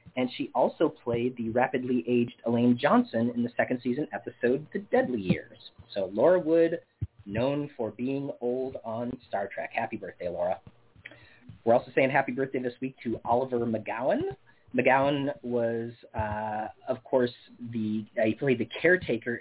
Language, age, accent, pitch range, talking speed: English, 30-49, American, 115-145 Hz, 160 wpm